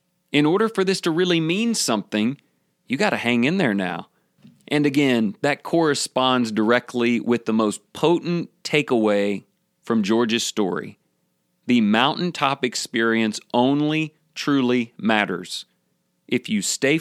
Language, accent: English, American